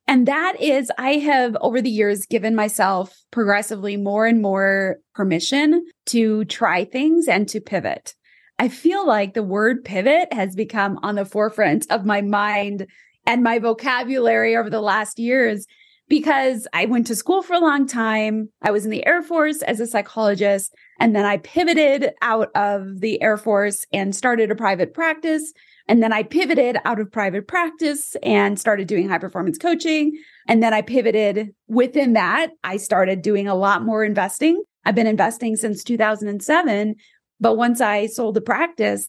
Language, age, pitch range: English, 20-39, 210-280 Hz